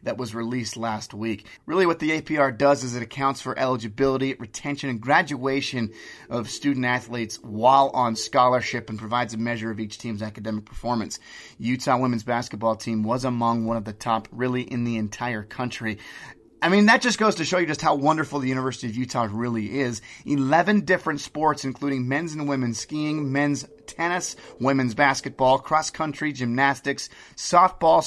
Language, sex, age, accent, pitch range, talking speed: English, male, 30-49, American, 115-140 Hz, 170 wpm